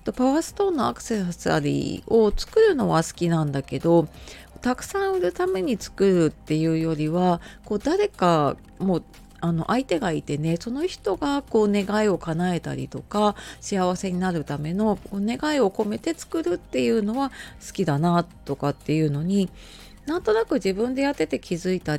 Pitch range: 155-230 Hz